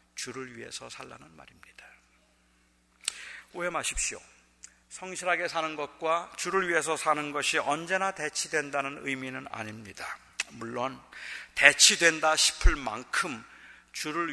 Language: Korean